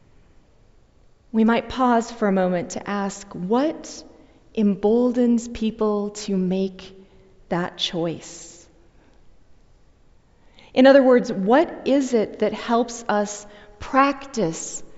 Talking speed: 100 wpm